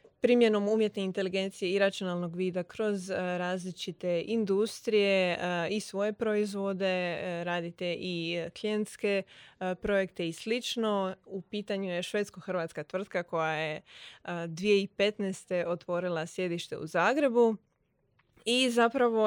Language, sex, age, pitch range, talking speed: Croatian, female, 20-39, 175-205 Hz, 100 wpm